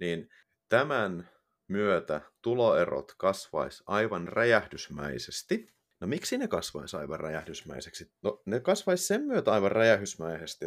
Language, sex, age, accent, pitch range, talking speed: Finnish, male, 30-49, native, 105-160 Hz, 110 wpm